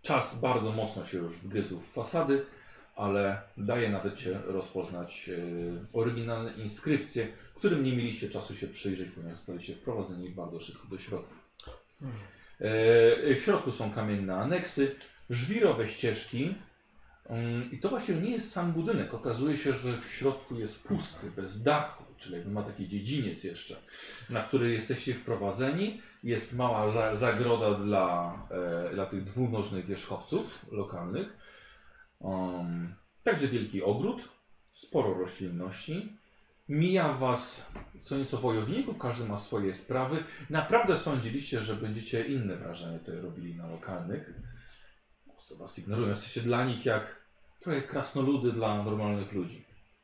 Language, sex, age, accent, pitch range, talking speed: Polish, male, 40-59, native, 95-135 Hz, 125 wpm